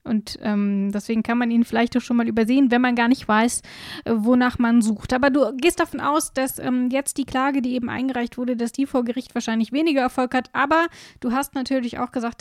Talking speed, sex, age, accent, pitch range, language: 230 wpm, female, 10-29, German, 235-280 Hz, German